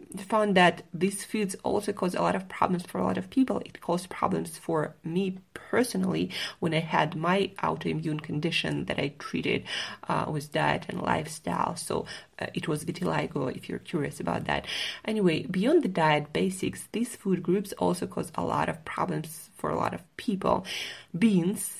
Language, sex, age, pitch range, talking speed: English, female, 20-39, 155-195 Hz, 180 wpm